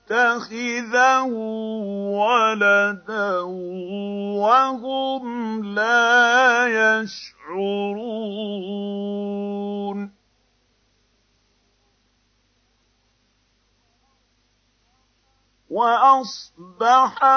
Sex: male